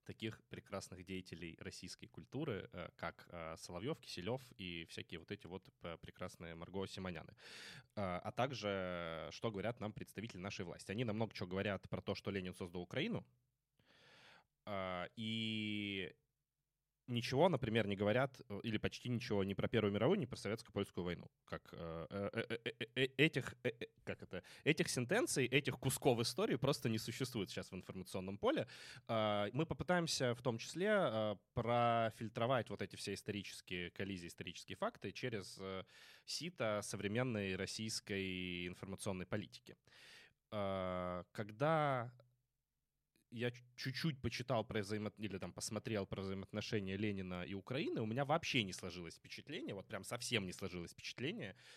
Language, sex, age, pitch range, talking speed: Russian, male, 20-39, 95-125 Hz, 125 wpm